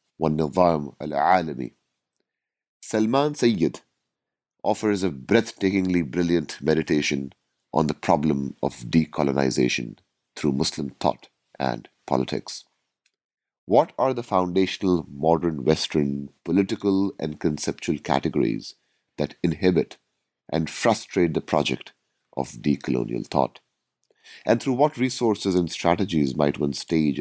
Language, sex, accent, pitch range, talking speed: English, male, Indian, 75-95 Hz, 100 wpm